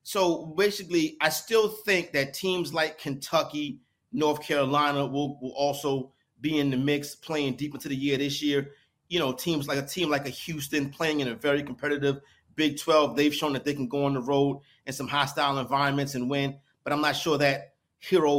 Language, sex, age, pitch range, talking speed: English, male, 30-49, 140-165 Hz, 200 wpm